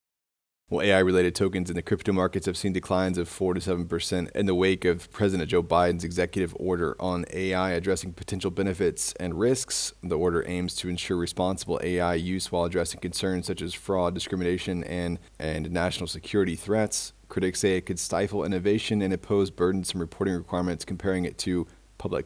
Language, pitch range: English, 85-95 Hz